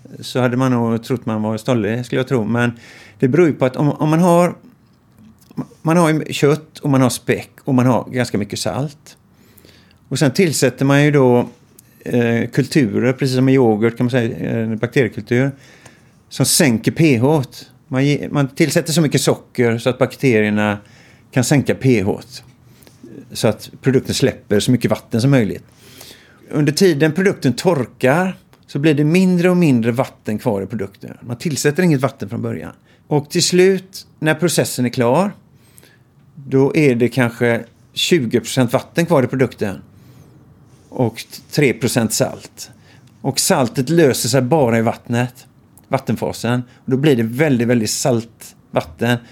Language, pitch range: Swedish, 120-145 Hz